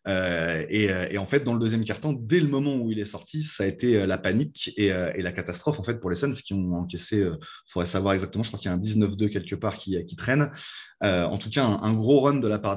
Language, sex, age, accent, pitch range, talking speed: French, male, 20-39, French, 95-120 Hz, 295 wpm